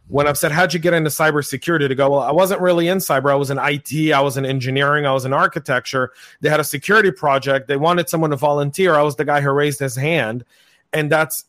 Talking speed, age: 250 wpm, 40-59